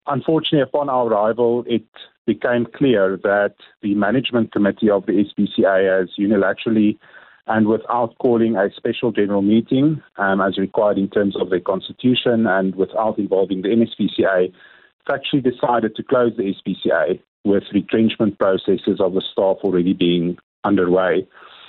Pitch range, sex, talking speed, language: 100-120 Hz, male, 140 wpm, English